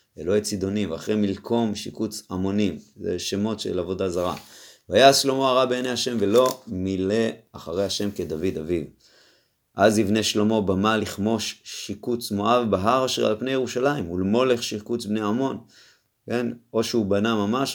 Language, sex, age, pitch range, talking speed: Hebrew, male, 30-49, 100-125 Hz, 145 wpm